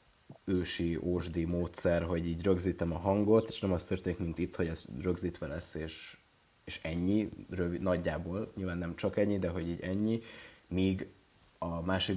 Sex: male